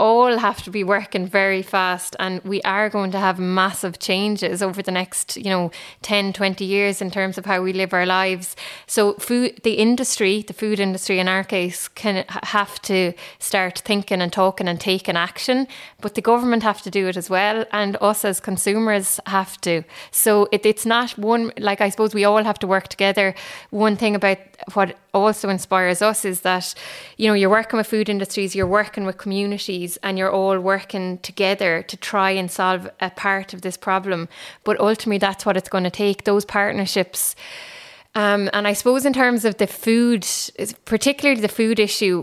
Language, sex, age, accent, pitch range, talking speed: English, female, 20-39, Irish, 190-215 Hz, 190 wpm